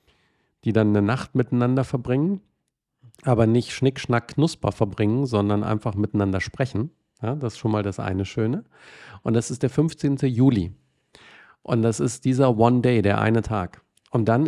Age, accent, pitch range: 40-59, German, 105-135 Hz